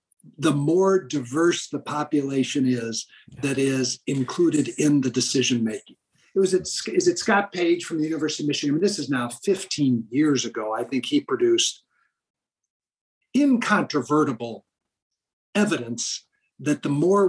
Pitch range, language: 140-215 Hz, English